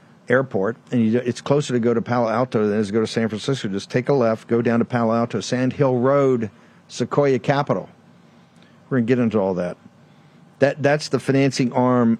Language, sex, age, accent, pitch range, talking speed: English, male, 50-69, American, 115-140 Hz, 215 wpm